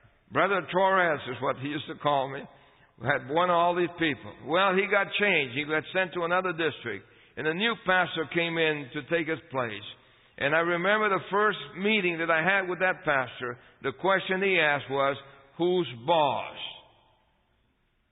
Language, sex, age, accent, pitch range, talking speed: English, male, 60-79, American, 145-190 Hz, 180 wpm